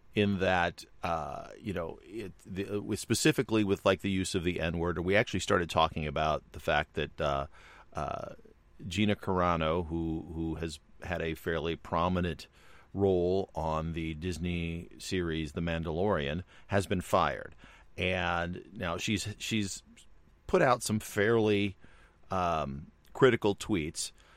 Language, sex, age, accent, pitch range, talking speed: English, male, 40-59, American, 75-95 Hz, 140 wpm